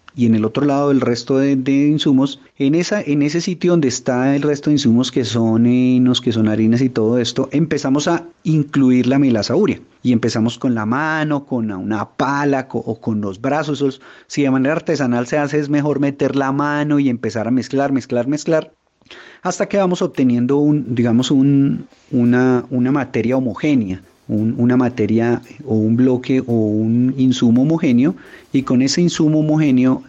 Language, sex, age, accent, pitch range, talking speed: Spanish, male, 30-49, Colombian, 115-145 Hz, 180 wpm